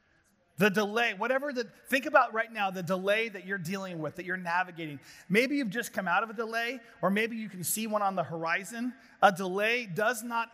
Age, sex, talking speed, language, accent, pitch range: 30-49, male, 215 wpm, English, American, 175-225 Hz